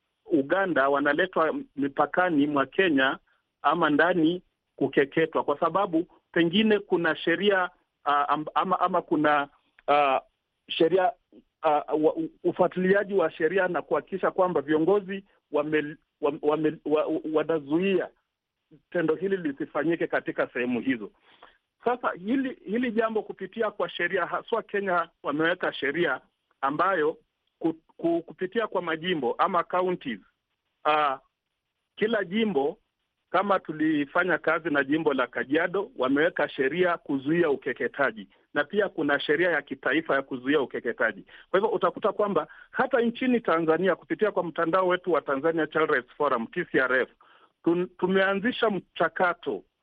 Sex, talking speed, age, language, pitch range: male, 120 wpm, 50-69, Swahili, 155-195 Hz